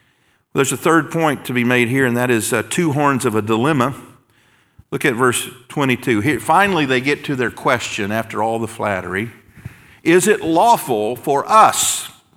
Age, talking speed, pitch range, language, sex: 50-69, 175 wpm, 120-155 Hz, English, male